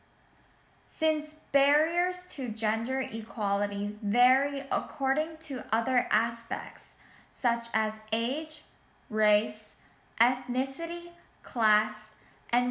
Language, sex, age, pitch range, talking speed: English, female, 10-29, 225-285 Hz, 80 wpm